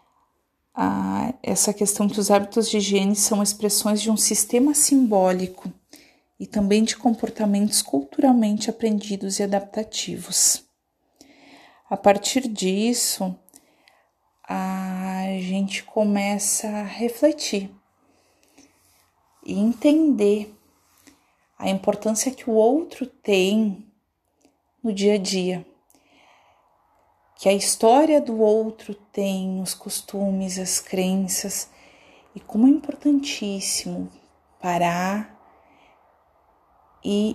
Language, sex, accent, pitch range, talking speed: Portuguese, female, Brazilian, 195-235 Hz, 90 wpm